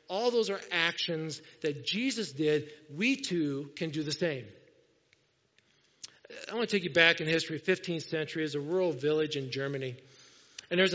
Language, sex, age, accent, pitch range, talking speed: English, male, 50-69, American, 155-205 Hz, 170 wpm